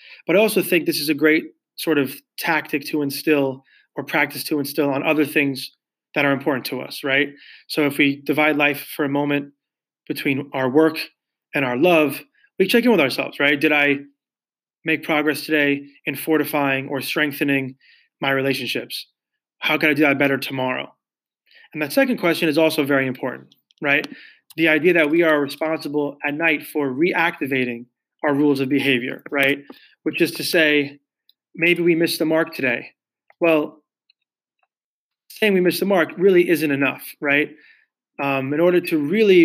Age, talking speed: 20-39, 170 wpm